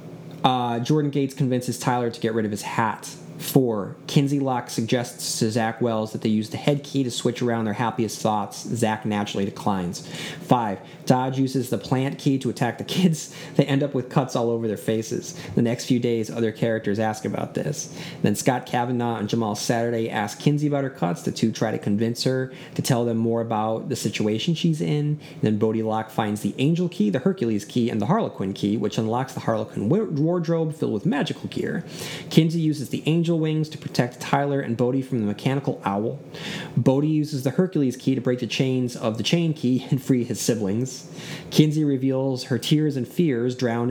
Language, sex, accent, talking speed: English, male, American, 205 wpm